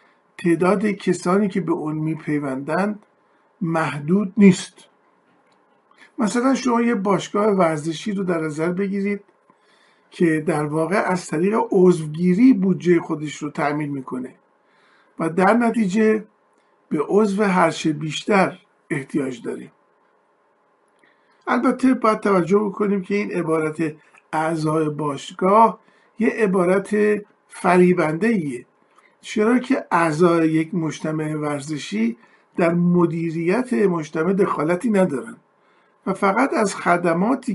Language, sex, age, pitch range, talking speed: Persian, male, 50-69, 160-210 Hz, 100 wpm